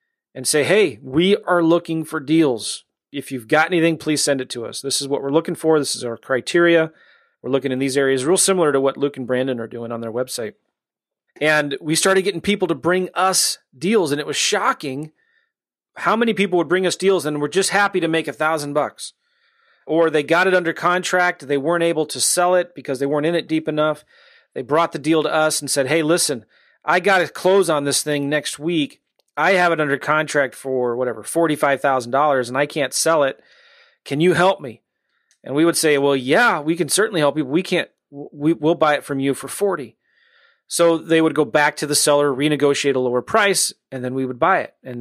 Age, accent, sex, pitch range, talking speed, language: 30-49, American, male, 140-175 Hz, 225 wpm, English